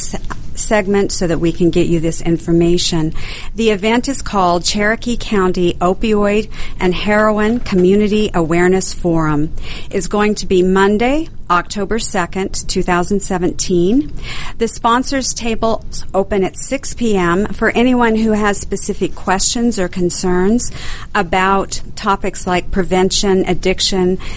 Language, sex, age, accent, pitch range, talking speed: English, female, 50-69, American, 180-215 Hz, 120 wpm